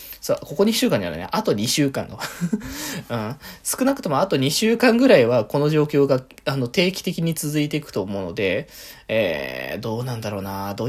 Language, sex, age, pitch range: Japanese, male, 20-39, 135-195 Hz